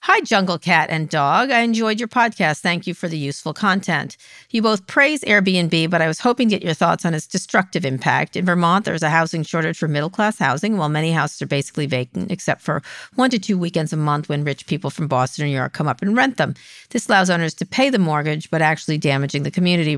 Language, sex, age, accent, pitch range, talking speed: English, female, 50-69, American, 145-190 Hz, 235 wpm